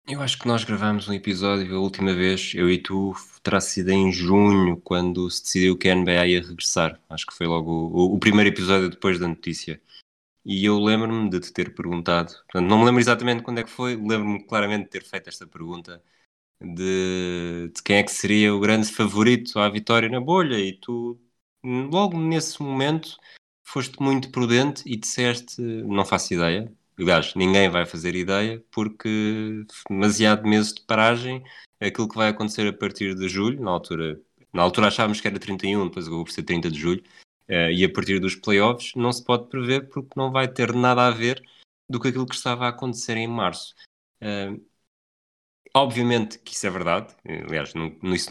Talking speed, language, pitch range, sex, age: 185 wpm, Portuguese, 95-120 Hz, male, 20-39